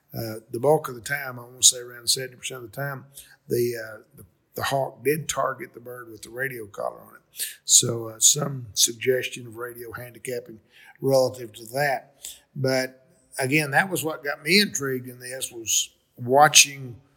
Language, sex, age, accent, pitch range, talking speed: English, male, 50-69, American, 125-150 Hz, 170 wpm